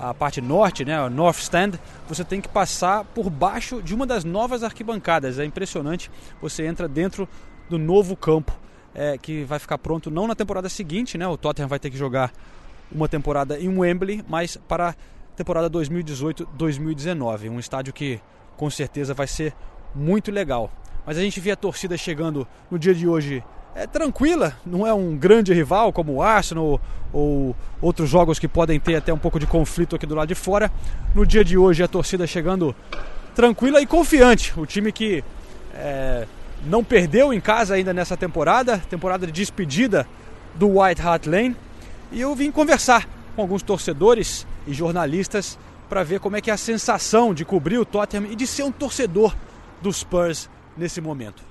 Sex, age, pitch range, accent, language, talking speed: male, 20-39, 155-205 Hz, Brazilian, Portuguese, 180 wpm